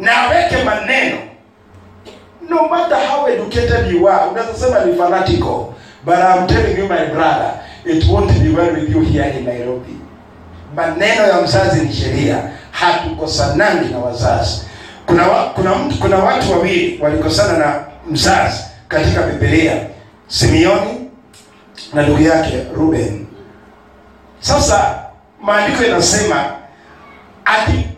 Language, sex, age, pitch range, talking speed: English, male, 50-69, 145-230 Hz, 115 wpm